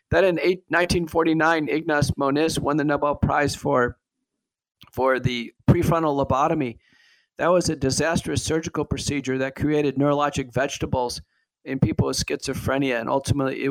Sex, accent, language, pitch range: male, American, English, 125-150 Hz